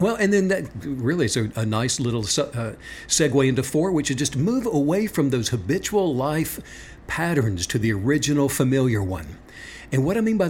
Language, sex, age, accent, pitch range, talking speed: English, male, 60-79, American, 120-165 Hz, 195 wpm